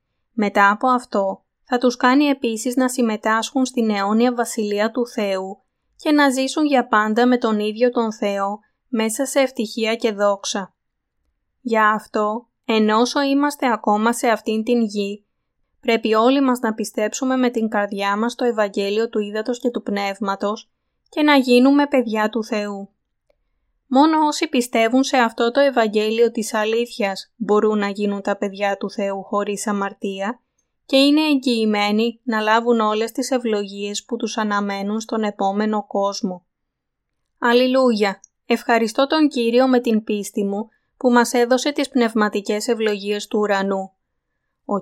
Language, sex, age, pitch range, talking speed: Greek, female, 20-39, 210-245 Hz, 145 wpm